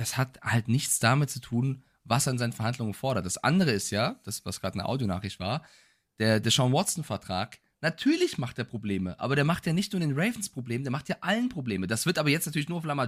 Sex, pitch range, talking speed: male, 125-185 Hz, 240 wpm